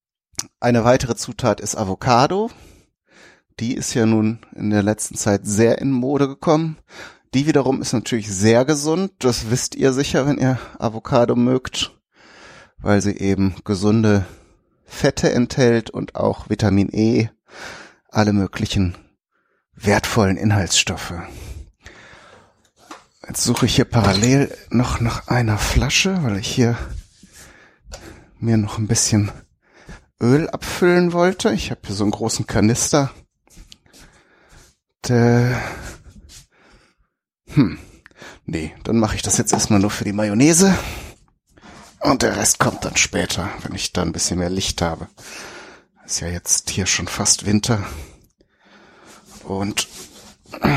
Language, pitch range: German, 100-130 Hz